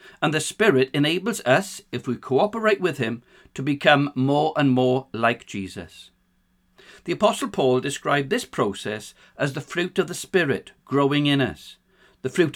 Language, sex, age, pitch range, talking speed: English, male, 50-69, 120-175 Hz, 160 wpm